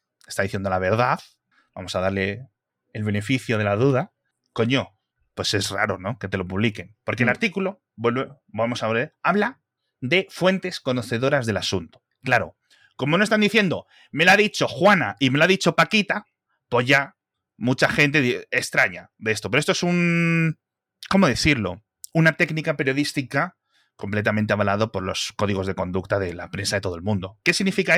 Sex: male